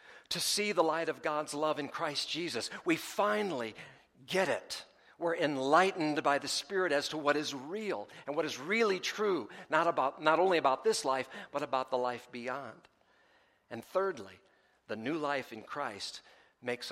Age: 60-79